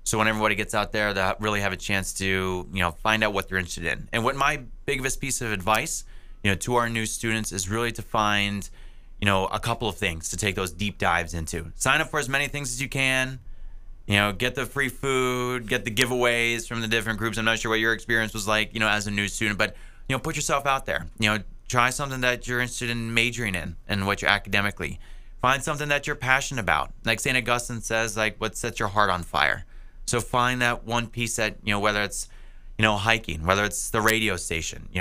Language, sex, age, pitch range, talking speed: English, male, 20-39, 100-125 Hz, 245 wpm